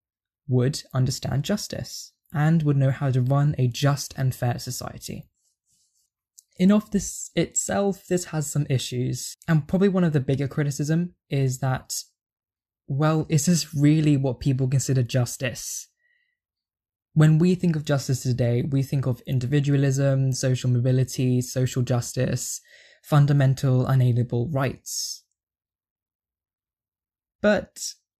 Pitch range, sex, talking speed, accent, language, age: 125-160 Hz, male, 120 wpm, British, English, 10-29